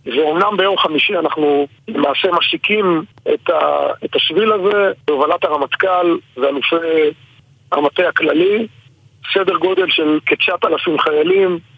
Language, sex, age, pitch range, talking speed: Hebrew, male, 50-69, 155-200 Hz, 95 wpm